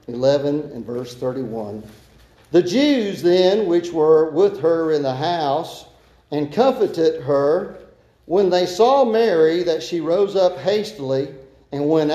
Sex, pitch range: male, 150-210 Hz